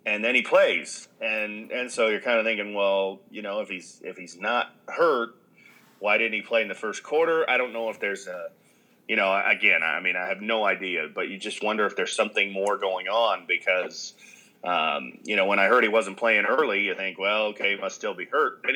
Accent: American